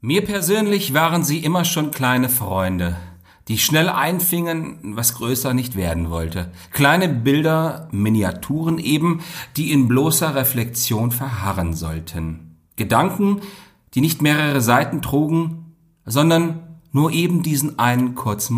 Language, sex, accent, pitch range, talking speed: German, male, German, 95-145 Hz, 125 wpm